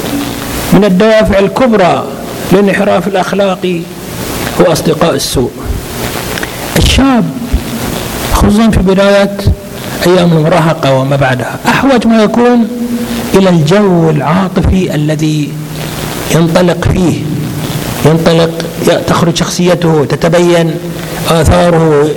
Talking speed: 80 wpm